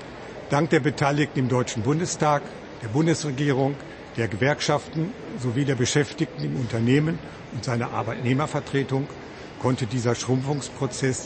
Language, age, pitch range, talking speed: German, 70-89, 120-145 Hz, 110 wpm